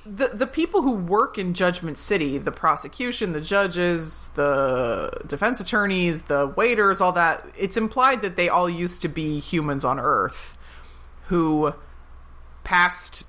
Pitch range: 150-195 Hz